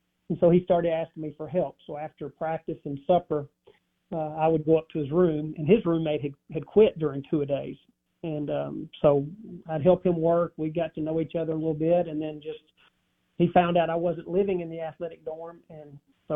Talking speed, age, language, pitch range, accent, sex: 225 wpm, 40-59, English, 155-180 Hz, American, male